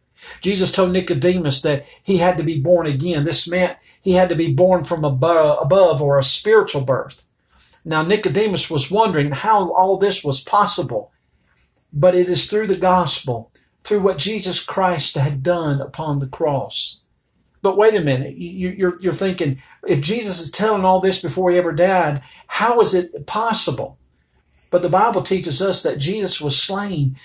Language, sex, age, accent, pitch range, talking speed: English, male, 50-69, American, 145-185 Hz, 170 wpm